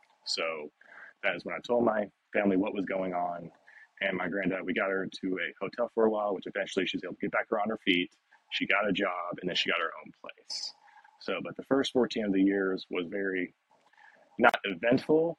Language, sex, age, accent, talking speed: English, male, 30-49, American, 225 wpm